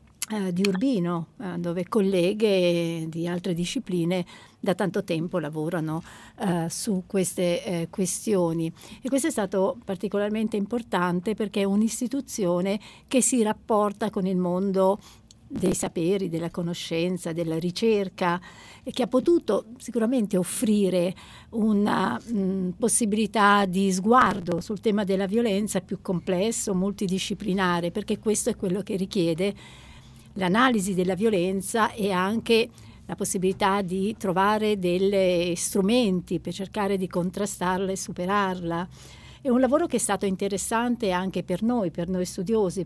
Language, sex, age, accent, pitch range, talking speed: Italian, female, 60-79, native, 180-220 Hz, 125 wpm